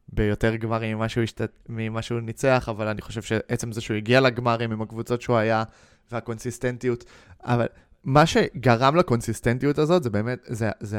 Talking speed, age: 145 wpm, 20-39